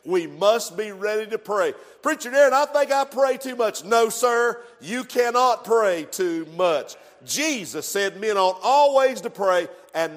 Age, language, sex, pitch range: 50-69, English, male, 185-255 Hz